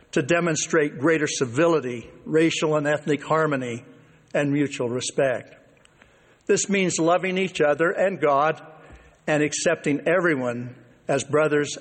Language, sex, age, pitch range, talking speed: English, male, 60-79, 140-170 Hz, 115 wpm